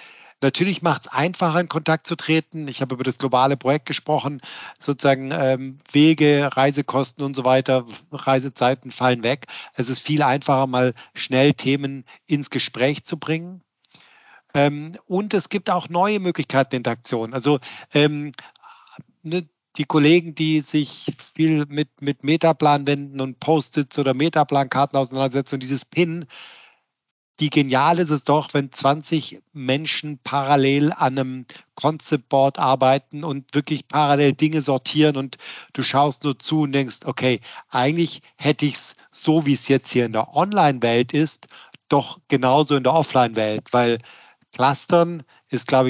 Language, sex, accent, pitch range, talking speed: German, male, German, 130-155 Hz, 150 wpm